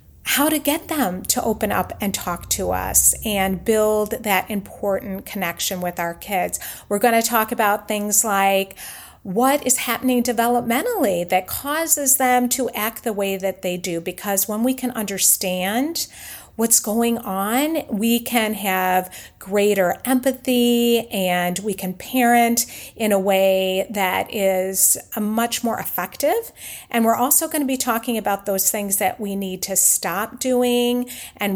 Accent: American